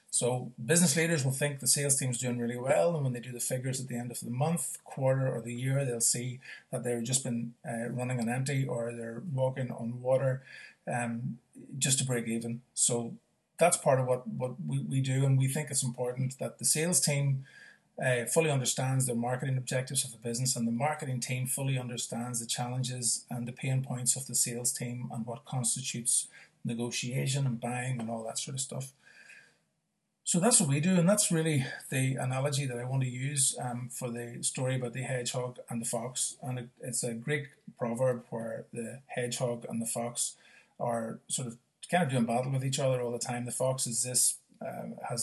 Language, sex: English, male